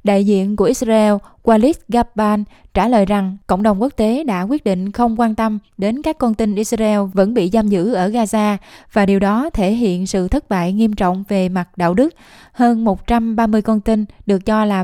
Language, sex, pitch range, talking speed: Vietnamese, female, 195-230 Hz, 205 wpm